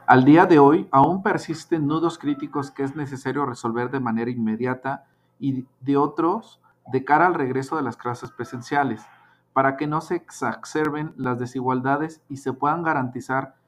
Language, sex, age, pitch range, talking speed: Spanish, male, 40-59, 125-150 Hz, 160 wpm